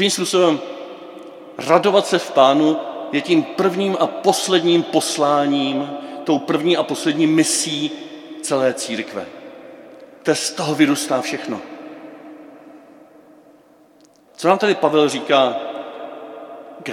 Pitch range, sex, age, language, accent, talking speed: 150-200 Hz, male, 40-59, Czech, native, 105 wpm